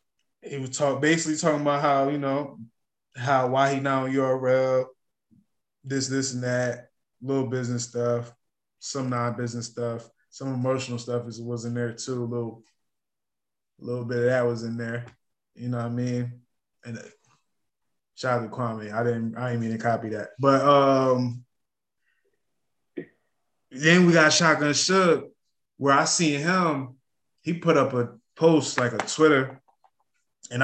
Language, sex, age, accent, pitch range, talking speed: English, male, 20-39, American, 115-130 Hz, 165 wpm